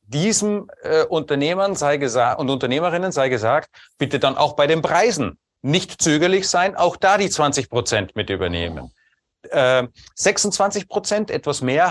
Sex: male